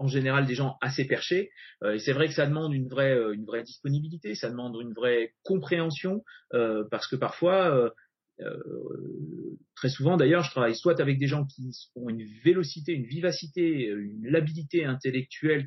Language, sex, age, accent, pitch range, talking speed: French, male, 30-49, French, 125-165 Hz, 185 wpm